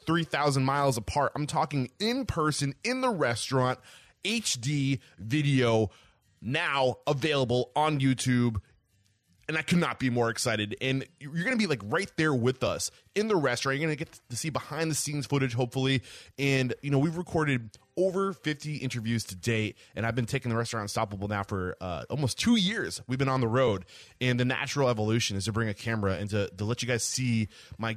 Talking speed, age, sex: 195 wpm, 20-39, male